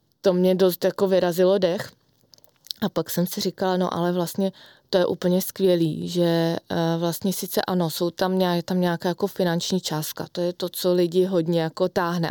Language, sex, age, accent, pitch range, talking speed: Czech, female, 20-39, native, 175-190 Hz, 185 wpm